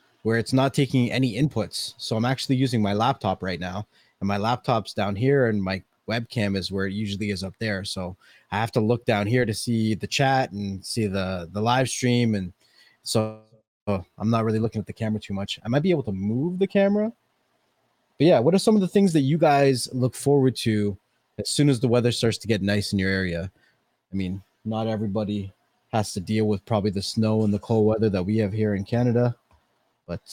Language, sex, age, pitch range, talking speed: English, male, 20-39, 100-125 Hz, 225 wpm